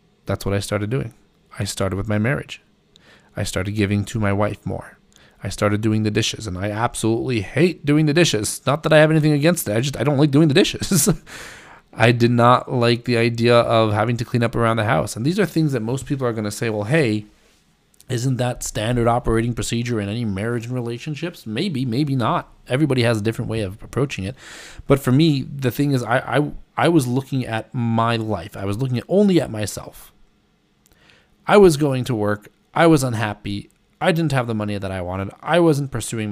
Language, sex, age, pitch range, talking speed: English, male, 30-49, 105-140 Hz, 220 wpm